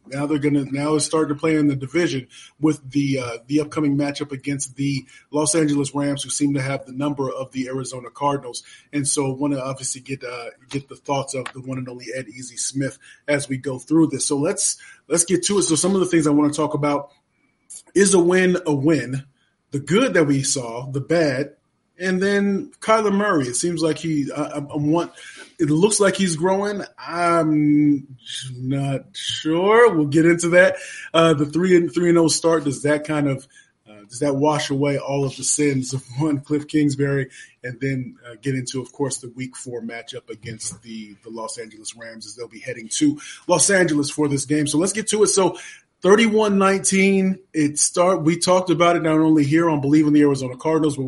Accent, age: American, 20-39